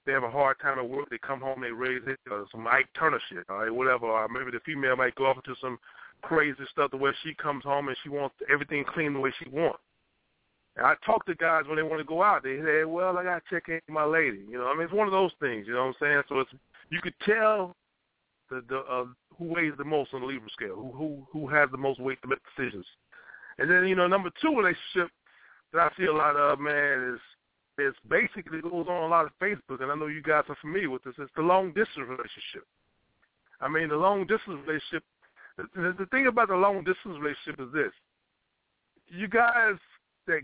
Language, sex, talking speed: English, male, 245 wpm